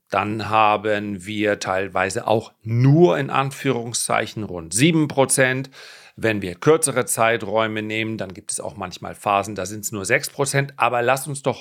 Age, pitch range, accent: 40-59, 110-150 Hz, German